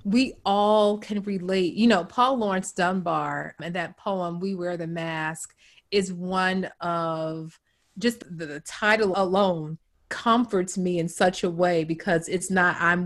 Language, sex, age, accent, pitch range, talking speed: English, female, 30-49, American, 175-215 Hz, 150 wpm